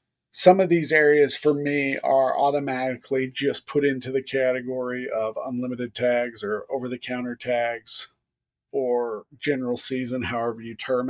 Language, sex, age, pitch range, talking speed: English, male, 40-59, 125-145 Hz, 135 wpm